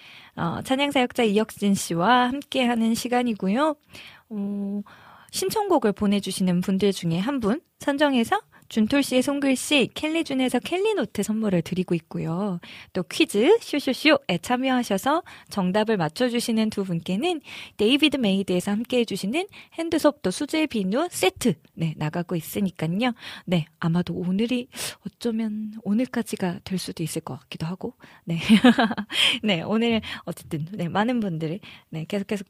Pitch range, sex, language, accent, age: 185-255 Hz, female, Korean, native, 20-39